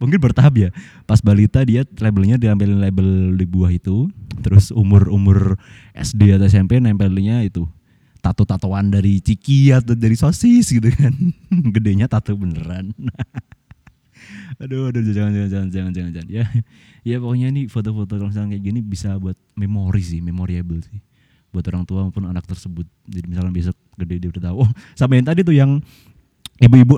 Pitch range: 100-140 Hz